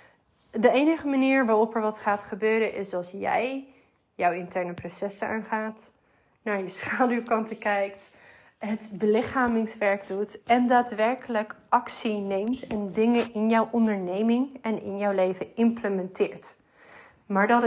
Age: 30-49